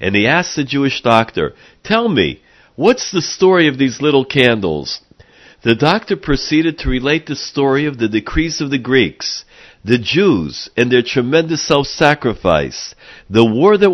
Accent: American